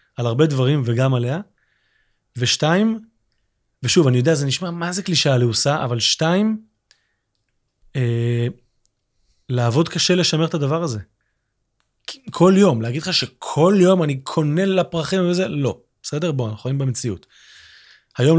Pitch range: 125-165 Hz